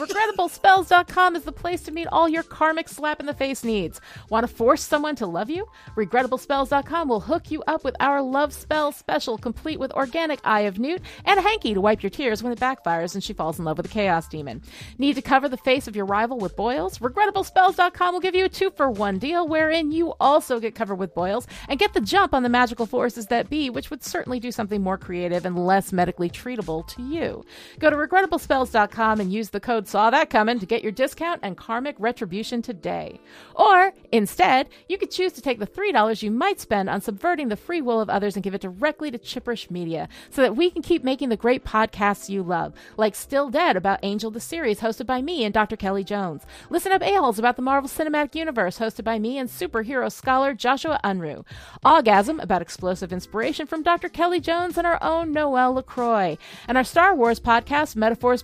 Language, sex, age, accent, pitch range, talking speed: English, female, 40-59, American, 215-315 Hz, 215 wpm